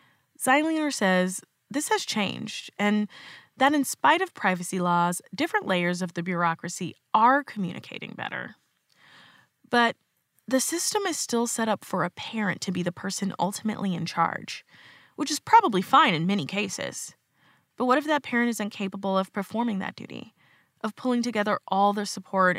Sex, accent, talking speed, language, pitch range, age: female, American, 160 wpm, English, 180-240 Hz, 20-39